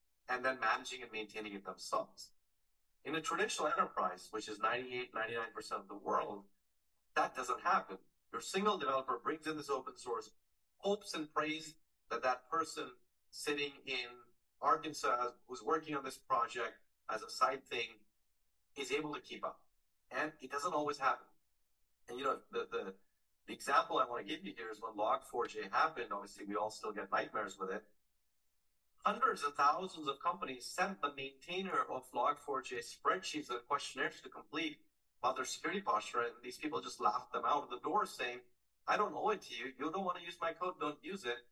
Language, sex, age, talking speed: English, male, 40-59, 180 wpm